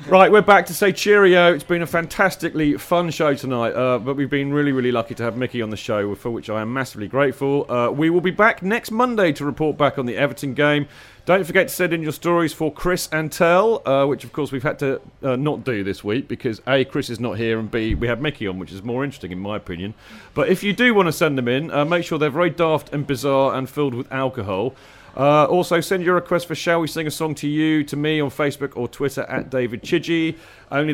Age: 40-59